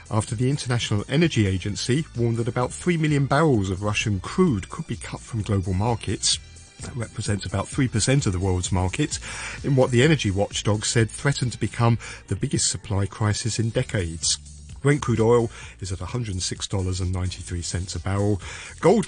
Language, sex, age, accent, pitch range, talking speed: English, male, 40-59, British, 95-125 Hz, 165 wpm